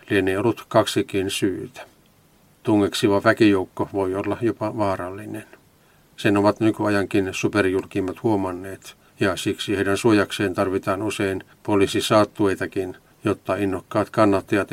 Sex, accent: male, native